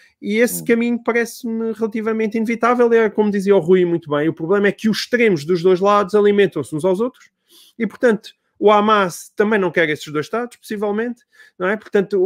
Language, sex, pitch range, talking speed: Portuguese, male, 160-215 Hz, 195 wpm